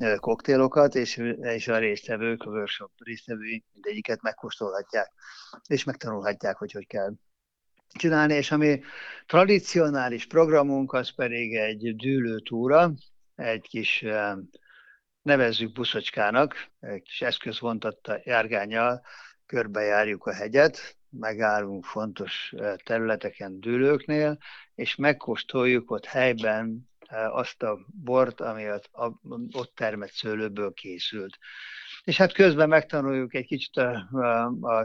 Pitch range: 110-140 Hz